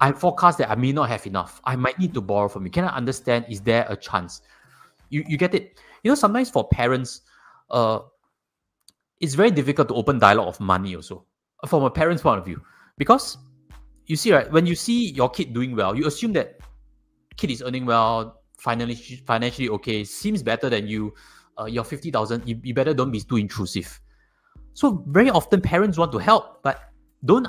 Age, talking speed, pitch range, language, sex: 20-39, 195 wpm, 110-160 Hz, English, male